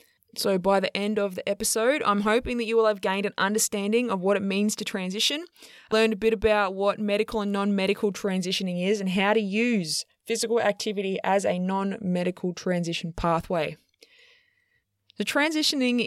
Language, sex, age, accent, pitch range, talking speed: English, female, 20-39, Australian, 180-220 Hz, 175 wpm